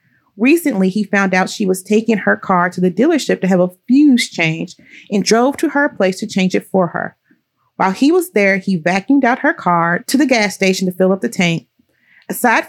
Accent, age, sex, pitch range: American, 40-59, female, 185-240 Hz